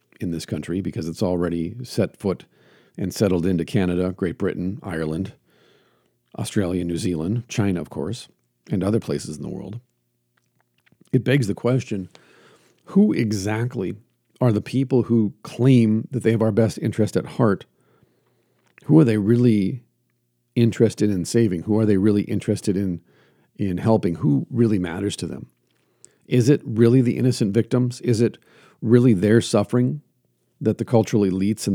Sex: male